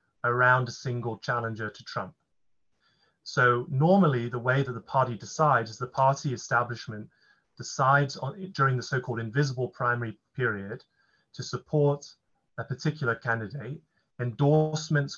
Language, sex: English, male